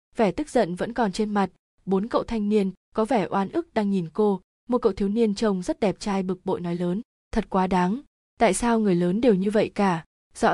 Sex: female